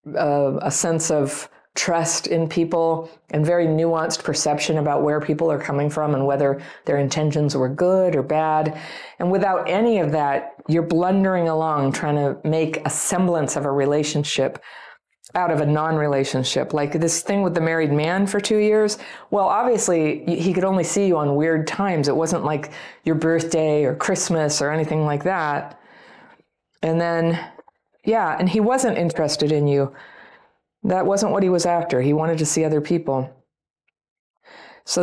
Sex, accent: female, American